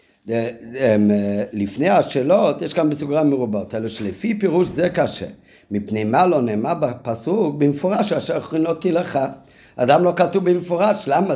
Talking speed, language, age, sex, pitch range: 150 wpm, Hebrew, 50-69, male, 130-180 Hz